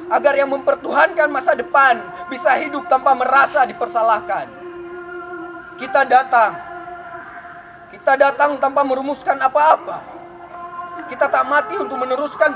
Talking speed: 105 wpm